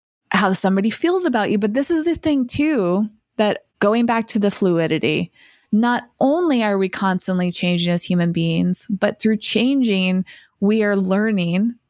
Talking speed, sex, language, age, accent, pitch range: 160 wpm, female, English, 20-39, American, 190-250 Hz